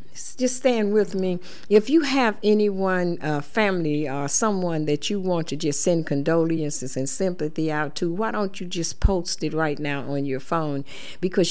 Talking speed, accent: 180 wpm, American